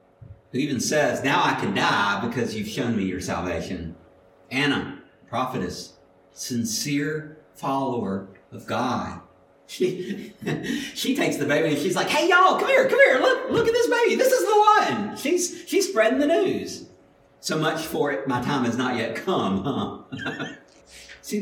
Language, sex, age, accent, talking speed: English, male, 50-69, American, 165 wpm